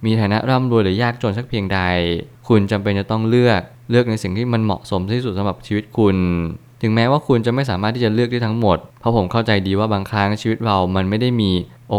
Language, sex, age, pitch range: Thai, male, 20-39, 95-115 Hz